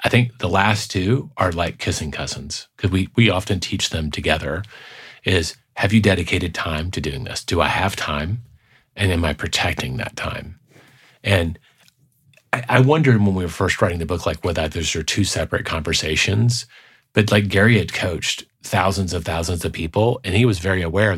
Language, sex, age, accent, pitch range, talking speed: English, male, 40-59, American, 90-115 Hz, 195 wpm